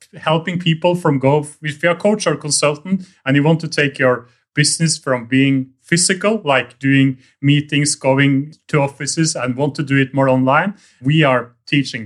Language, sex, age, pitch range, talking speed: English, male, 30-49, 130-160 Hz, 180 wpm